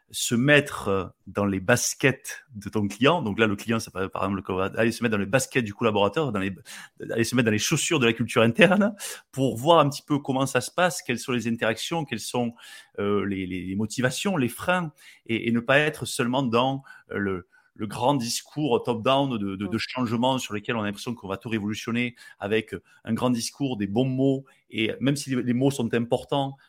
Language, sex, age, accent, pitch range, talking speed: French, male, 30-49, French, 105-135 Hz, 210 wpm